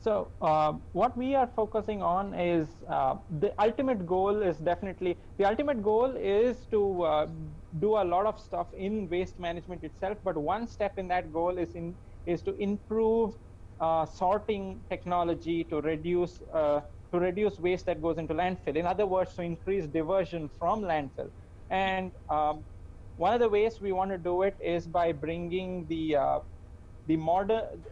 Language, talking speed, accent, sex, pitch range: English, 170 wpm, Indian, male, 155-190 Hz